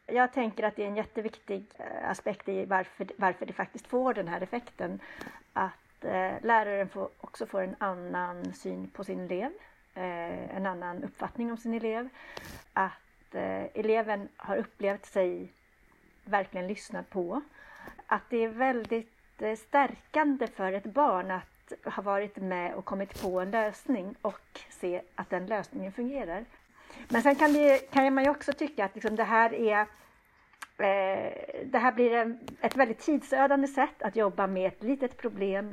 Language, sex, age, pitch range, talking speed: Swedish, female, 60-79, 190-240 Hz, 160 wpm